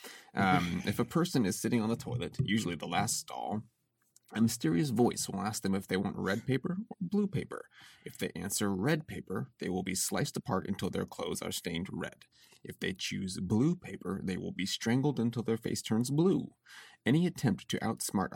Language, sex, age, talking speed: English, male, 30-49, 200 wpm